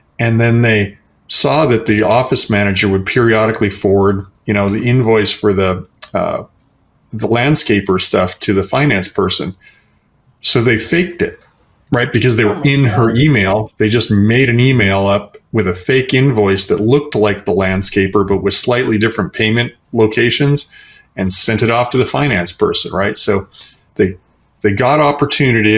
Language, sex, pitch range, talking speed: English, male, 100-120 Hz, 165 wpm